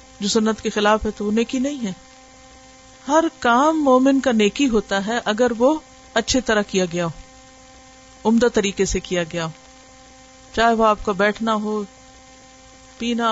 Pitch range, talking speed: 215-260 Hz, 160 wpm